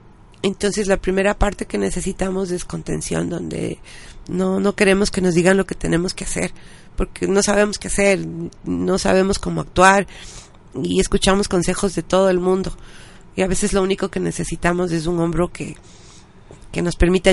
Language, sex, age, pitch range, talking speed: Spanish, female, 40-59, 170-210 Hz, 175 wpm